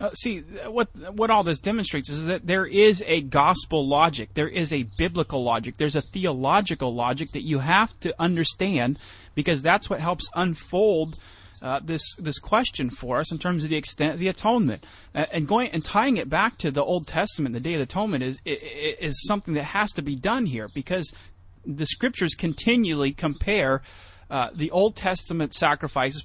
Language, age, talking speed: English, 30-49, 185 wpm